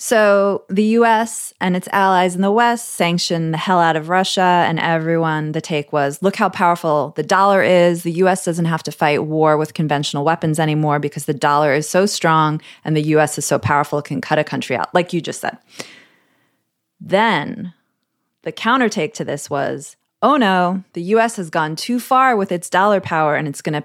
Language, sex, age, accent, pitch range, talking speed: English, female, 20-39, American, 155-195 Hz, 205 wpm